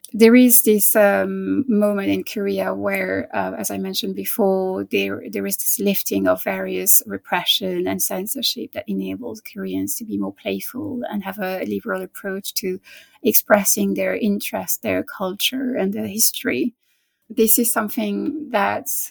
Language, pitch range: English, 190-235 Hz